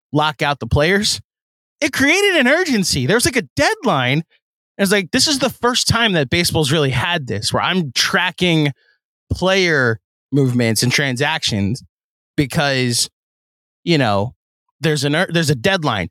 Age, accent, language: 20-39, American, English